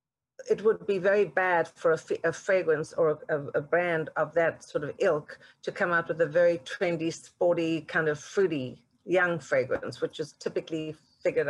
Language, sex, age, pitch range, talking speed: English, female, 50-69, 155-205 Hz, 190 wpm